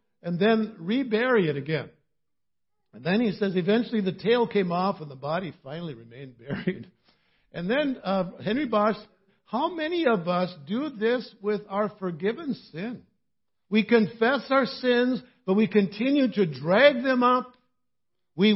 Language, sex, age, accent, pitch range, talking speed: English, male, 60-79, American, 175-235 Hz, 150 wpm